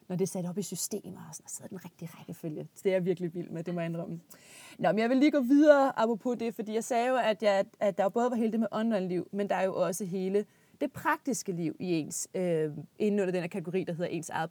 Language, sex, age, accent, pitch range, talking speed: Danish, female, 20-39, native, 185-225 Hz, 285 wpm